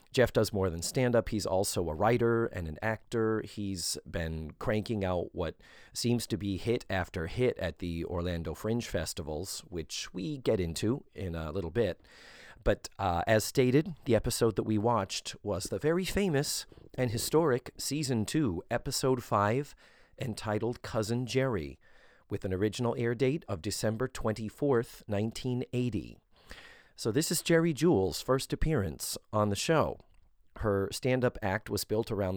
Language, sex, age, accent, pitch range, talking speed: English, male, 40-59, American, 95-125 Hz, 155 wpm